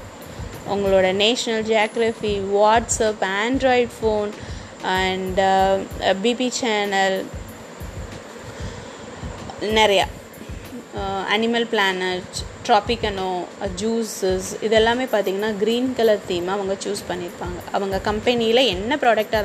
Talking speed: 80 wpm